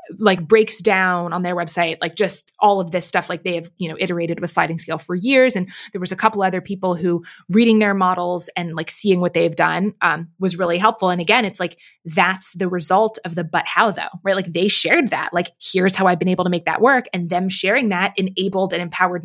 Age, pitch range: 20-39, 175-200 Hz